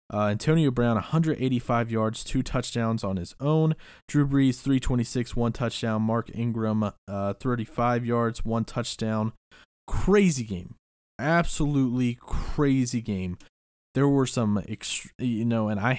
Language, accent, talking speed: English, American, 130 wpm